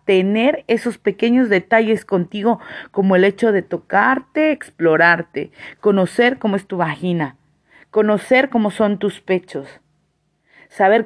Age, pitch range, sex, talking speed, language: 40-59, 175-220 Hz, female, 120 wpm, Spanish